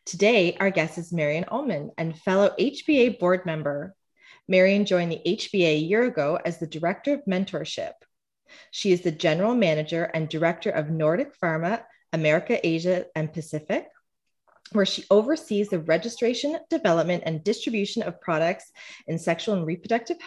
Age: 30-49